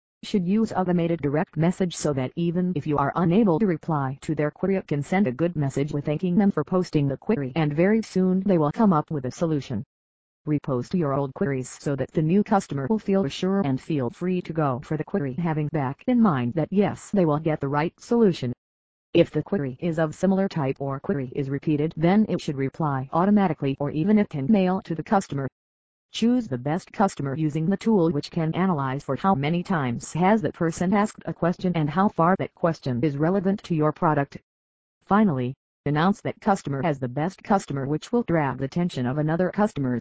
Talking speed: 215 wpm